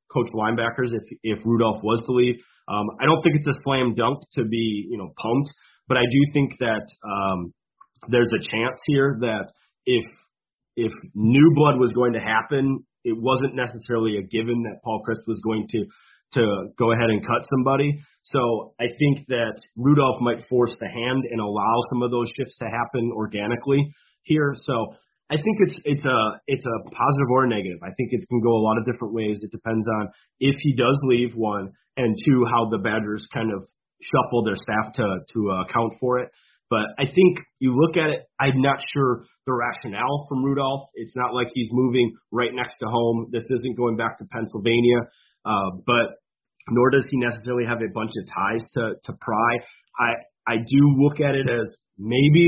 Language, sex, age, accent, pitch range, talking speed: English, male, 30-49, American, 115-135 Hz, 195 wpm